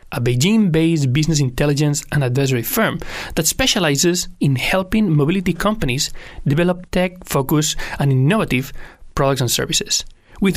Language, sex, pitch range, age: Chinese, male, 140-185 Hz, 30-49